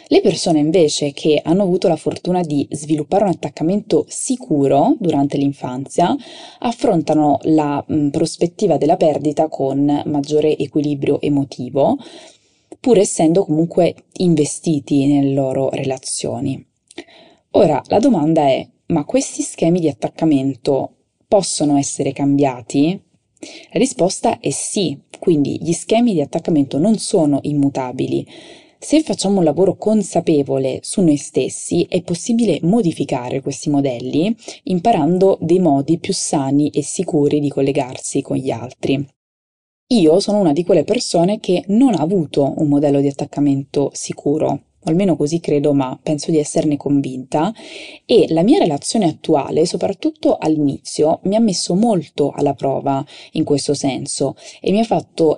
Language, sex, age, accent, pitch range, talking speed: Italian, female, 20-39, native, 140-185 Hz, 135 wpm